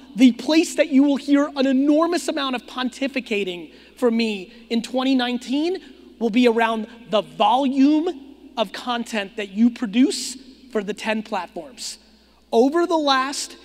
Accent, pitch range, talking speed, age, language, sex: American, 220-275 Hz, 140 wpm, 30-49, English, male